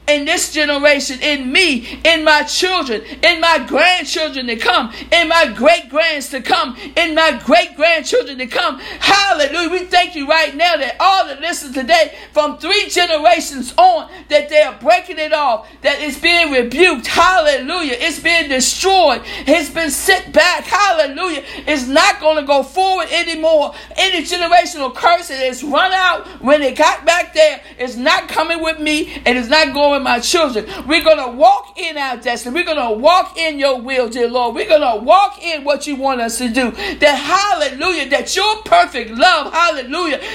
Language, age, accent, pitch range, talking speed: English, 60-79, American, 275-340 Hz, 180 wpm